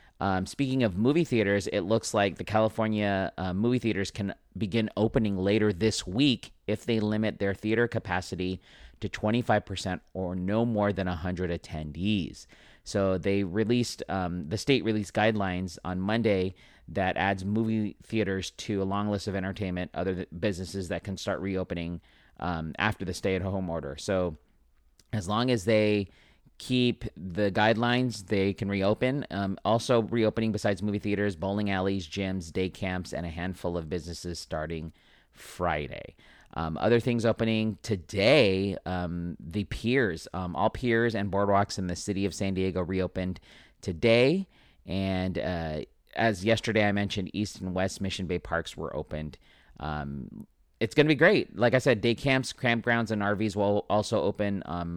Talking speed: 155 wpm